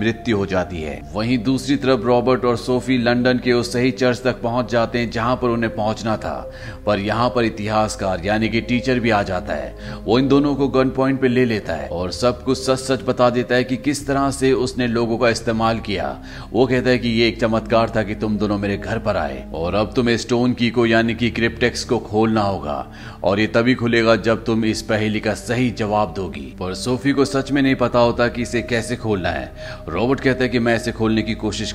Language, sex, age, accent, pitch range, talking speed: Hindi, male, 30-49, native, 105-125 Hz, 130 wpm